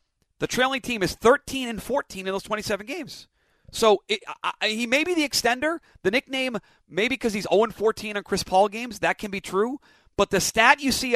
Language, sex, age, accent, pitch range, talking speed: English, male, 40-59, American, 160-215 Hz, 210 wpm